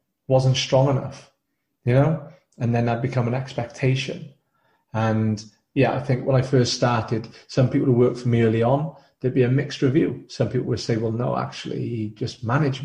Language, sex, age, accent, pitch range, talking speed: English, male, 30-49, British, 115-140 Hz, 200 wpm